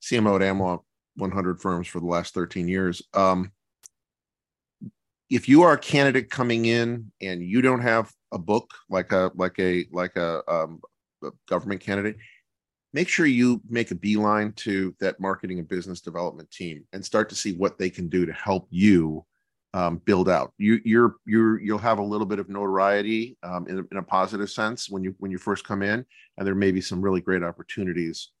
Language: English